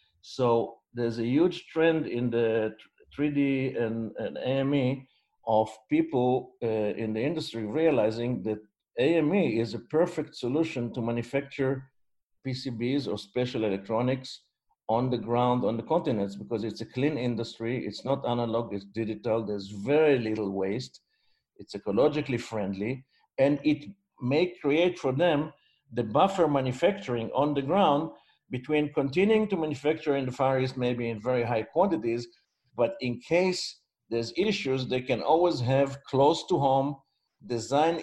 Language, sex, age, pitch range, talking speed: English, male, 50-69, 115-145 Hz, 145 wpm